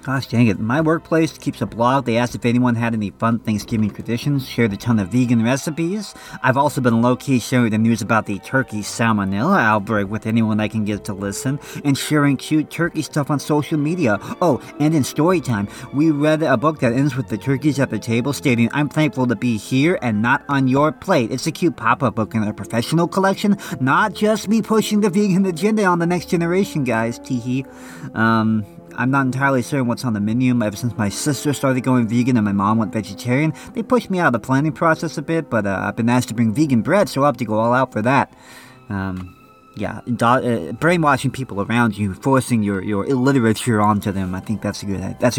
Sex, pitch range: male, 110-145 Hz